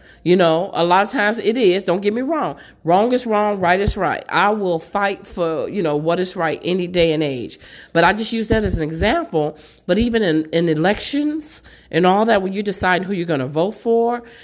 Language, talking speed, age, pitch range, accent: English, 235 wpm, 40-59, 165-210 Hz, American